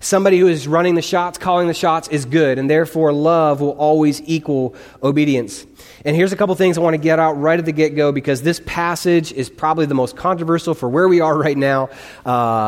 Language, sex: English, male